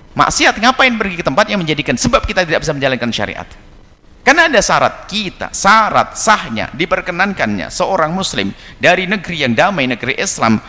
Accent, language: native, Indonesian